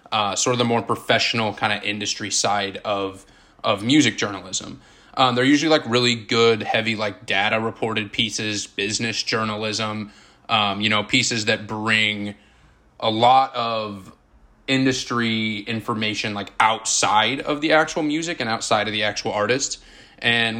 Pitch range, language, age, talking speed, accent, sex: 110-130 Hz, English, 20-39, 150 wpm, American, male